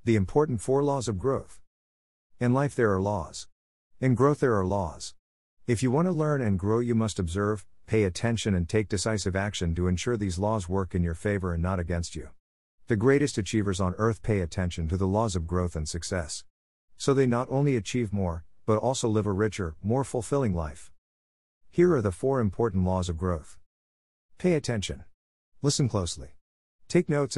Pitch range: 85-120 Hz